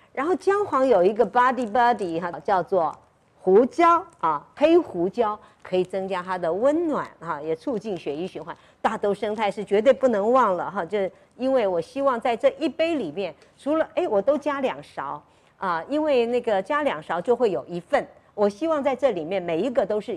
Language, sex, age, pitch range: Chinese, female, 50-69, 190-280 Hz